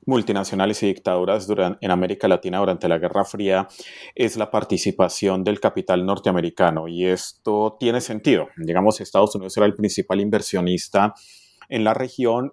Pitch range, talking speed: 95-110 Hz, 150 wpm